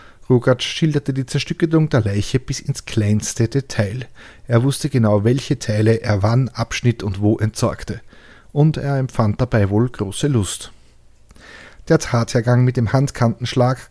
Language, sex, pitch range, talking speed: German, male, 110-130 Hz, 140 wpm